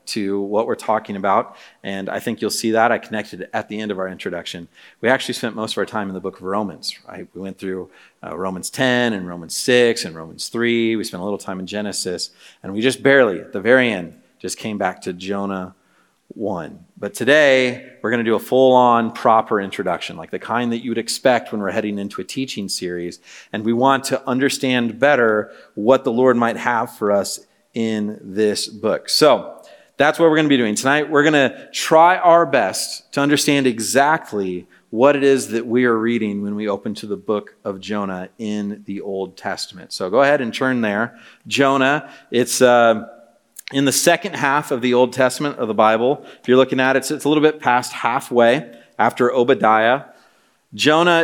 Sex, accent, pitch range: male, American, 100-130 Hz